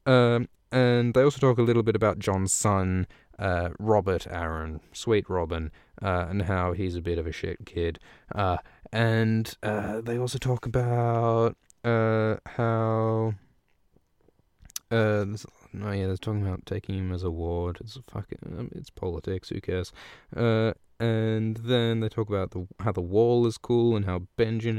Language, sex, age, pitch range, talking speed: English, male, 20-39, 90-115 Hz, 160 wpm